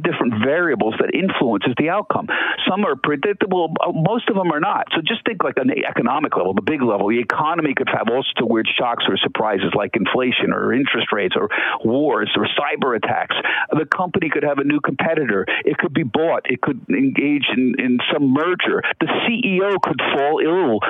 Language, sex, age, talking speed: English, male, 50-69, 195 wpm